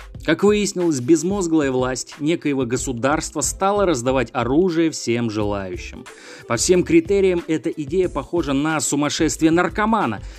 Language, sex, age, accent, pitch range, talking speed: Russian, male, 30-49, native, 115-170 Hz, 115 wpm